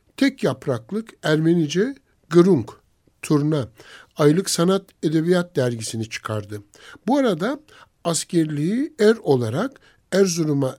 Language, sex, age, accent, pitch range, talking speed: Turkish, male, 60-79, native, 135-205 Hz, 90 wpm